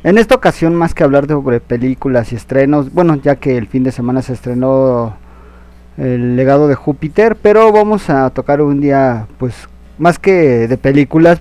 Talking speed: 180 wpm